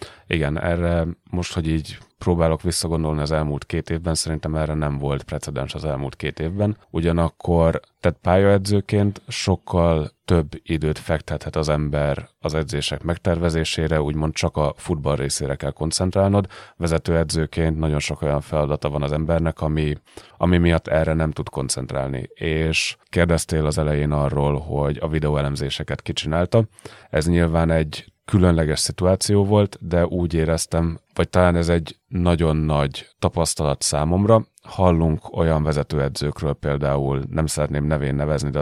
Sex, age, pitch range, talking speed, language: male, 30-49, 75-85 Hz, 140 wpm, Hungarian